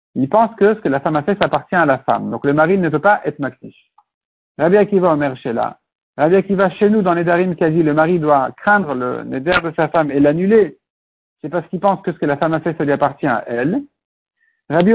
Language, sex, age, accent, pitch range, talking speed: French, male, 60-79, French, 160-215 Hz, 255 wpm